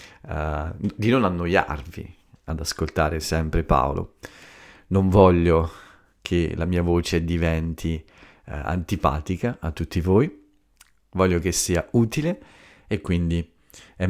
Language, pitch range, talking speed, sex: Italian, 85-100 Hz, 115 wpm, male